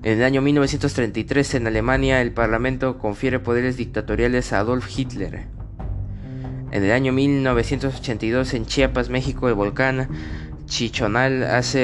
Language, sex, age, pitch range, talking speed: Spanish, male, 20-39, 105-130 Hz, 125 wpm